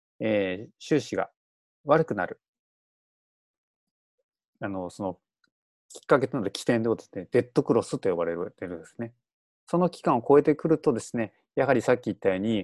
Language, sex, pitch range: Japanese, male, 105-160 Hz